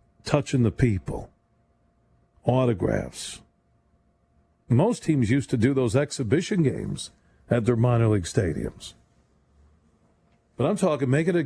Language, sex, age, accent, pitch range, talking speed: English, male, 50-69, American, 120-155 Hz, 120 wpm